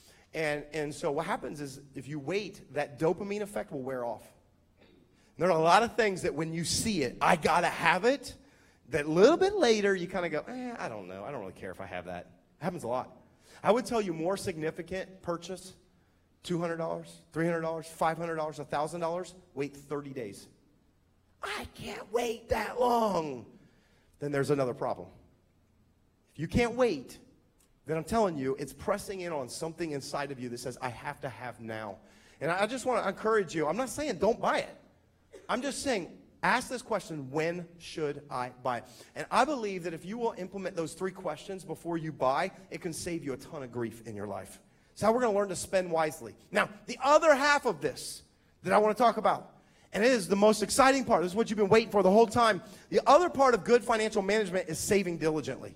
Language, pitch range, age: English, 140-210 Hz, 30-49